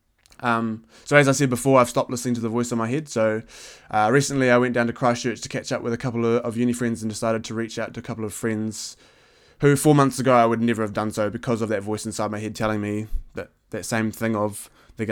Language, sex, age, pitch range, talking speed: English, male, 20-39, 110-120 Hz, 270 wpm